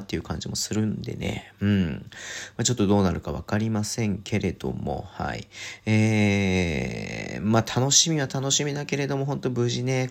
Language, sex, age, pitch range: Japanese, male, 40-59, 95-130 Hz